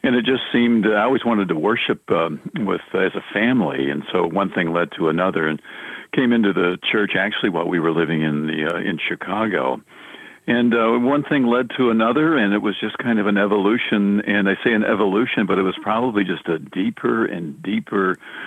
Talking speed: 215 wpm